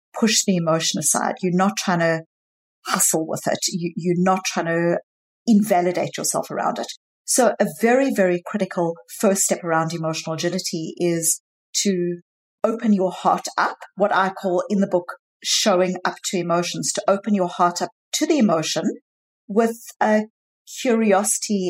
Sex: female